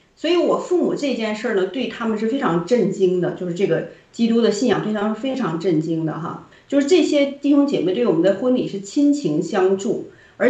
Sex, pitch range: female, 185-265 Hz